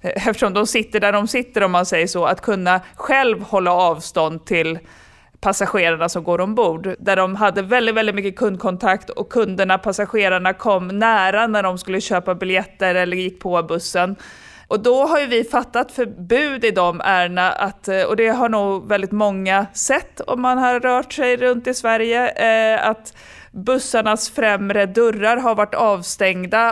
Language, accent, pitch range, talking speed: Swedish, native, 185-225 Hz, 160 wpm